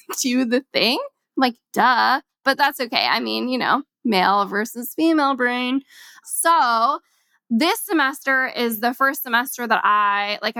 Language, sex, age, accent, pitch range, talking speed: English, female, 10-29, American, 205-255 Hz, 155 wpm